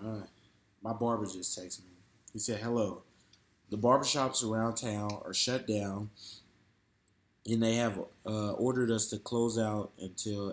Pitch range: 100-120 Hz